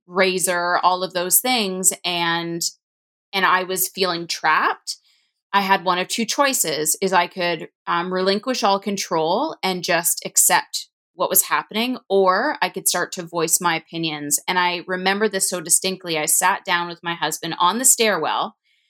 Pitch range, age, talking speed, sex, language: 170-195 Hz, 20-39, 170 wpm, female, English